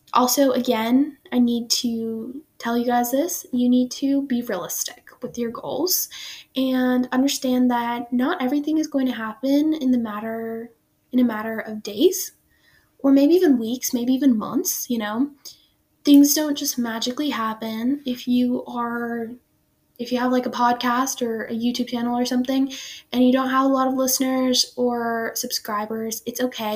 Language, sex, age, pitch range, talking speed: English, female, 10-29, 235-270 Hz, 170 wpm